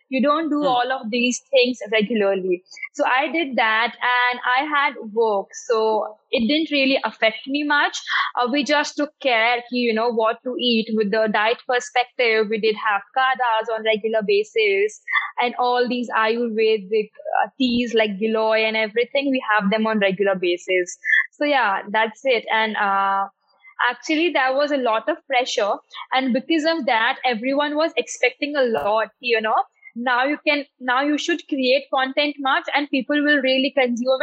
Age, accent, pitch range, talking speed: 20-39, Indian, 225-290 Hz, 170 wpm